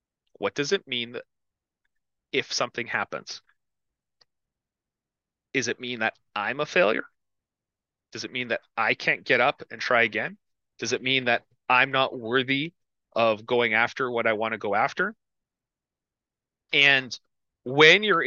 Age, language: 30-49, English